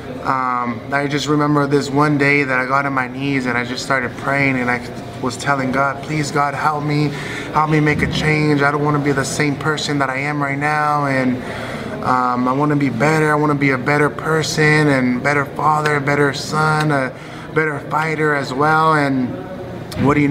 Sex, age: male, 20-39